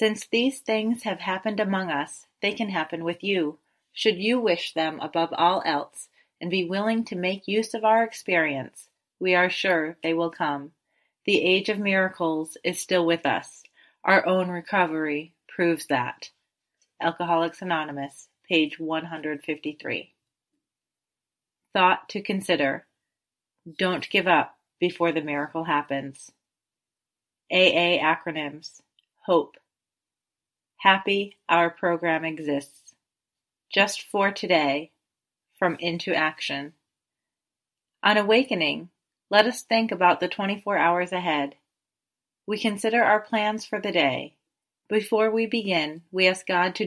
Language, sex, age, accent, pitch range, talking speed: English, female, 30-49, American, 160-200 Hz, 125 wpm